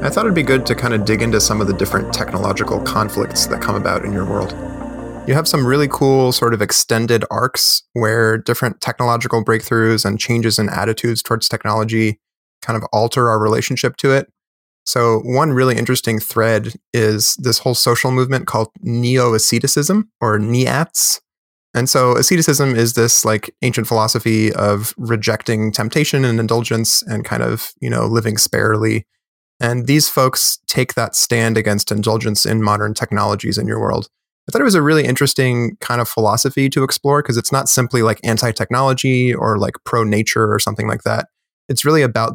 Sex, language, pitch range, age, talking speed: male, English, 110-130 Hz, 20-39, 175 wpm